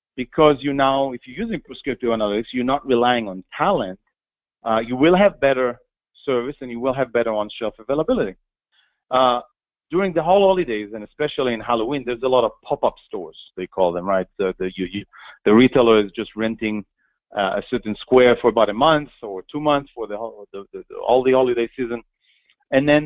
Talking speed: 200 wpm